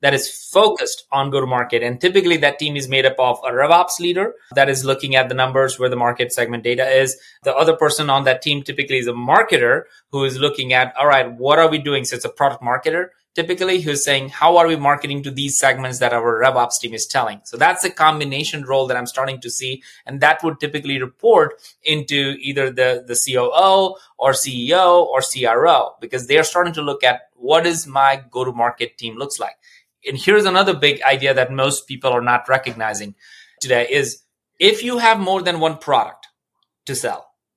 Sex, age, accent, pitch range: male, 30-49, Indian, 130-170 Hz